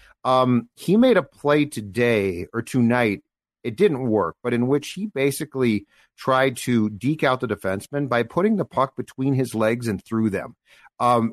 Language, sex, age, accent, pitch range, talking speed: English, male, 50-69, American, 120-155 Hz, 175 wpm